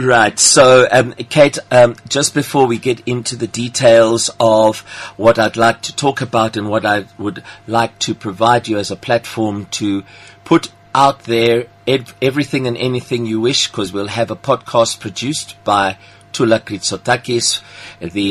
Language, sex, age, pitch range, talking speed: English, male, 50-69, 100-125 Hz, 165 wpm